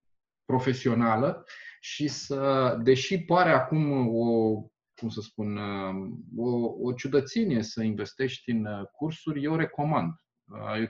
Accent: native